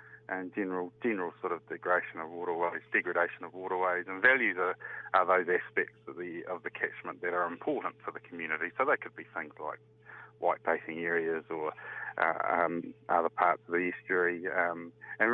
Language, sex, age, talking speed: English, male, 30-49, 185 wpm